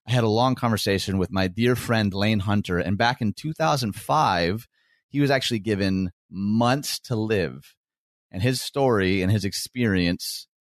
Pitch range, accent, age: 90-115 Hz, American, 30-49